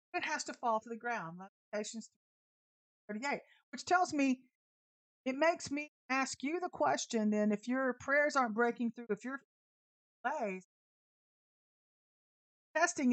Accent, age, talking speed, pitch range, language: American, 50-69, 130 wpm, 220-310 Hz, English